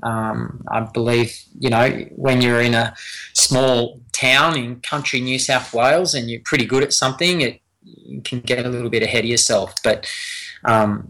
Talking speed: 185 wpm